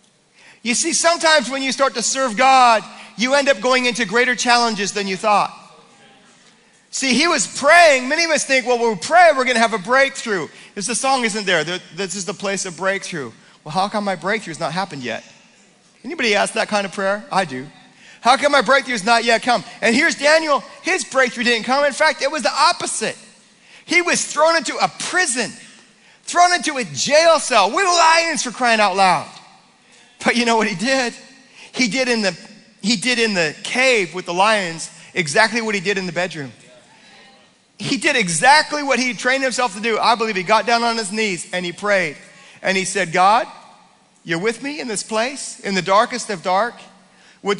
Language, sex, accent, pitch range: English, male, American, 205-265 Hz